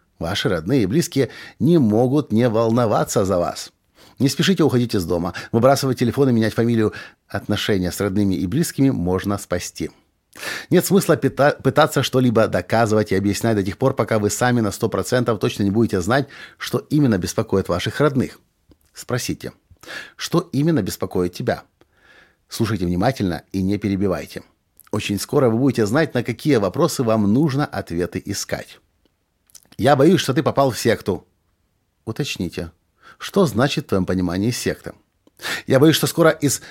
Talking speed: 150 wpm